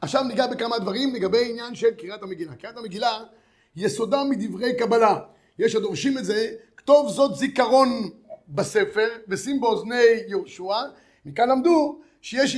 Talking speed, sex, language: 135 wpm, male, Hebrew